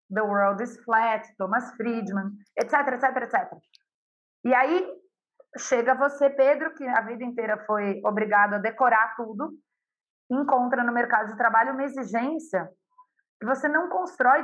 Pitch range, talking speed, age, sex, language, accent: 215-270 Hz, 140 wpm, 30-49, female, Portuguese, Brazilian